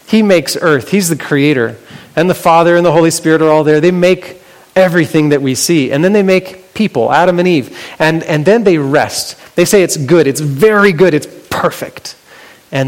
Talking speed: 210 wpm